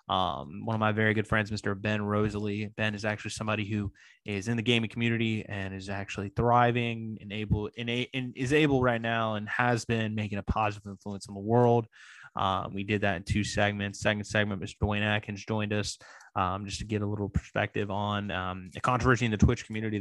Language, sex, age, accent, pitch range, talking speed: English, male, 20-39, American, 100-115 Hz, 220 wpm